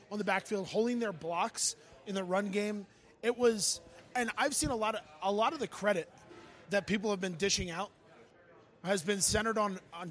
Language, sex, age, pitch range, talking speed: English, male, 20-39, 180-215 Hz, 200 wpm